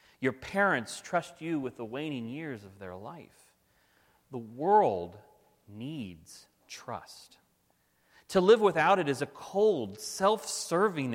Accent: American